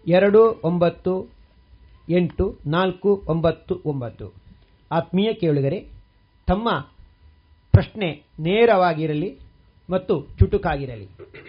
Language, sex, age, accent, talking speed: Kannada, male, 40-59, native, 70 wpm